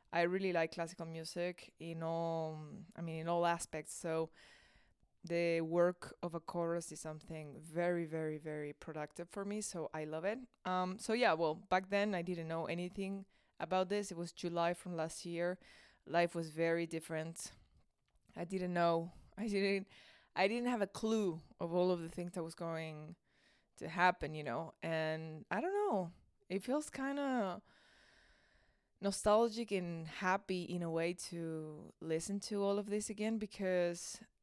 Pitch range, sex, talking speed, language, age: 160-190 Hz, female, 165 wpm, English, 20-39